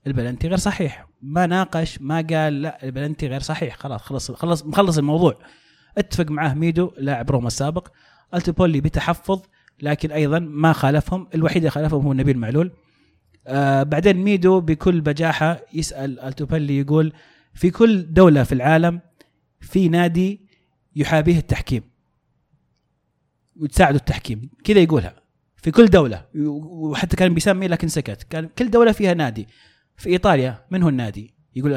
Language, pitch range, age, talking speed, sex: Arabic, 140-190 Hz, 30-49, 140 wpm, male